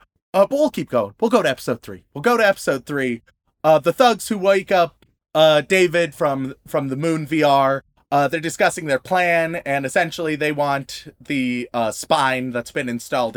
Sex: male